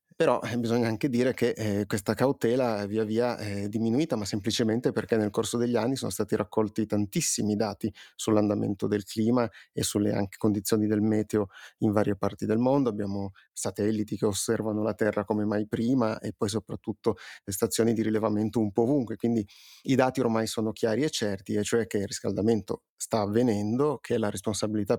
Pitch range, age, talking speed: 105-120 Hz, 30-49, 180 wpm